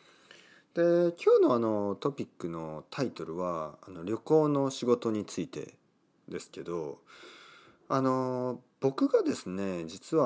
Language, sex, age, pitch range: Japanese, male, 40-59, 95-155 Hz